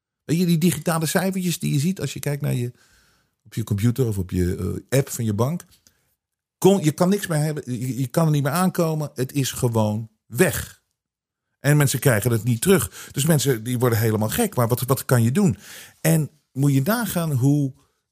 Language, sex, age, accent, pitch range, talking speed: Dutch, male, 50-69, Dutch, 110-150 Hz, 195 wpm